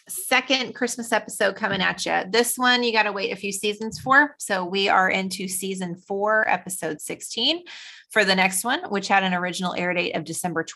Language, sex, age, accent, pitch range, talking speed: English, female, 30-49, American, 180-230 Hz, 205 wpm